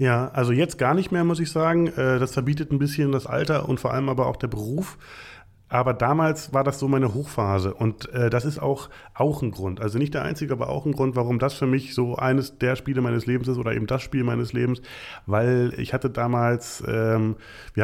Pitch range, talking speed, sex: 110-130 Hz, 220 wpm, male